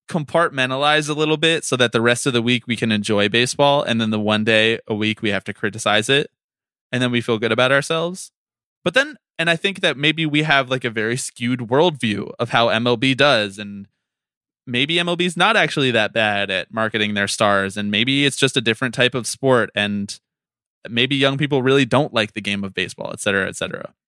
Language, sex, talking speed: English, male, 215 wpm